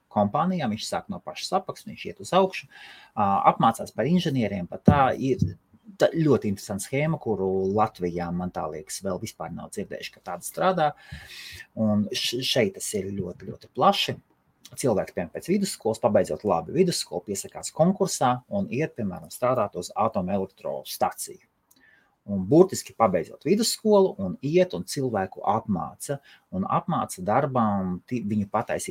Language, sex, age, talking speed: English, male, 30-49, 135 wpm